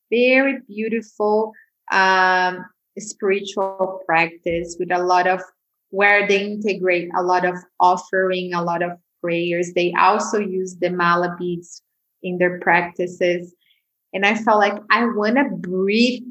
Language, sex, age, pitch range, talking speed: German, female, 20-39, 180-215 Hz, 135 wpm